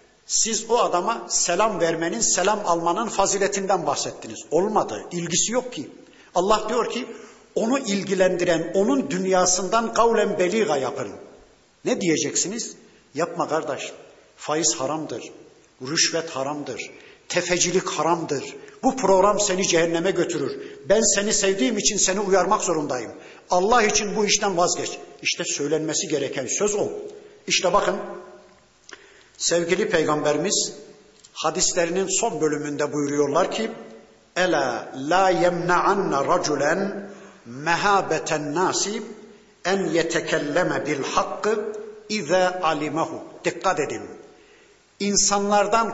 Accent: native